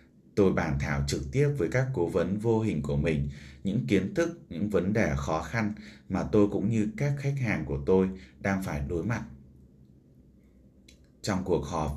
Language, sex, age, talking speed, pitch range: Vietnamese, male, 20-39, 185 wpm, 70-100 Hz